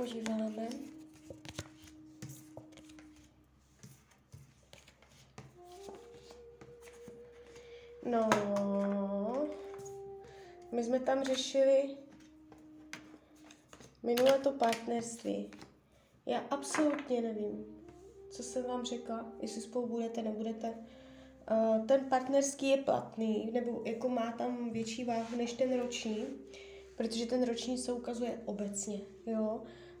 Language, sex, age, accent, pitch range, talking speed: Czech, female, 20-39, native, 210-265 Hz, 80 wpm